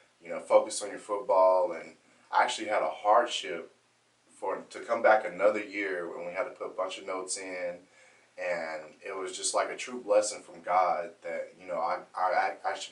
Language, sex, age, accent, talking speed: English, male, 20-39, American, 205 wpm